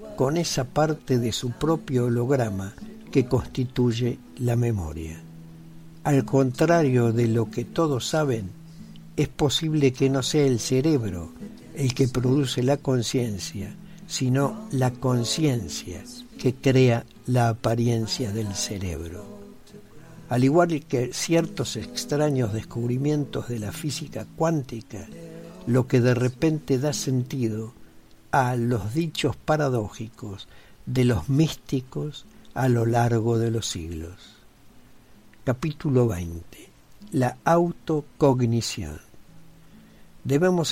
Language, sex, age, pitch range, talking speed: Spanish, male, 60-79, 115-150 Hz, 110 wpm